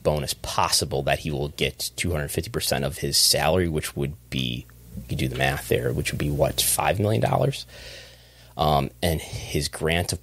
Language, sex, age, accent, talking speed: English, male, 30-49, American, 175 wpm